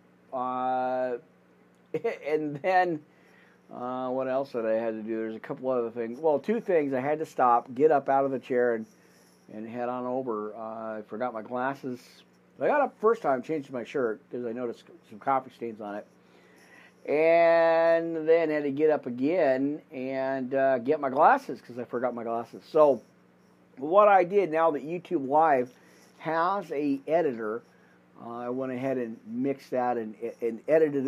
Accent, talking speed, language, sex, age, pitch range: American, 180 wpm, English, male, 50-69, 115-150 Hz